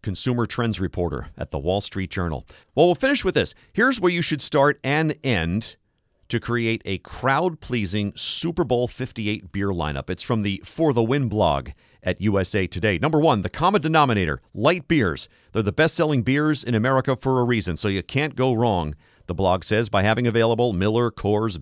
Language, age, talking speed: English, 40-59, 190 wpm